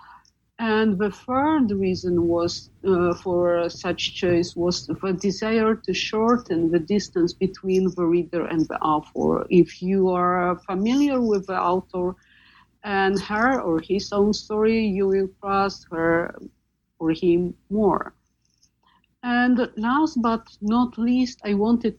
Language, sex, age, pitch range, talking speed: English, female, 50-69, 175-220 Hz, 135 wpm